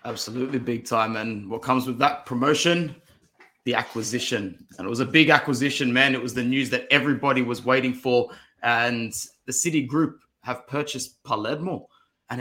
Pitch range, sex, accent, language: 125-155 Hz, male, Australian, English